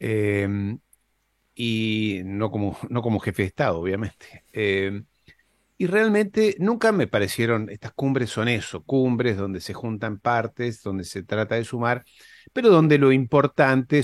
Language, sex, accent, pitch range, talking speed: Spanish, male, Argentinian, 100-135 Hz, 140 wpm